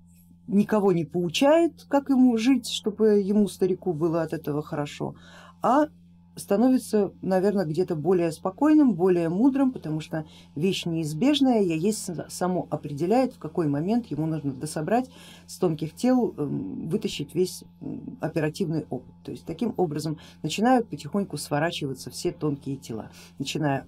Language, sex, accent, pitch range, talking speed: Russian, female, native, 140-200 Hz, 135 wpm